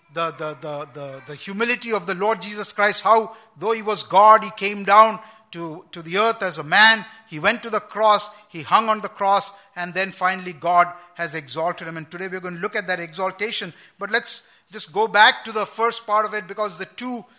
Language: English